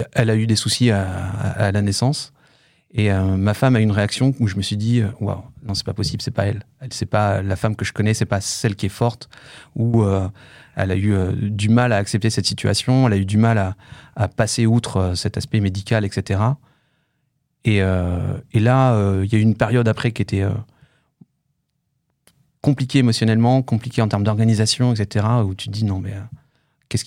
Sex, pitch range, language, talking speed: male, 105-130 Hz, French, 220 wpm